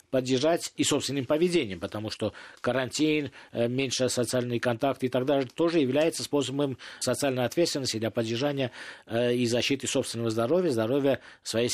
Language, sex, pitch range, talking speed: Russian, male, 120-155 Hz, 135 wpm